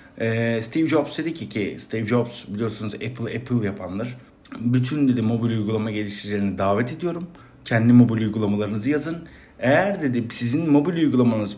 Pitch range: 110-145 Hz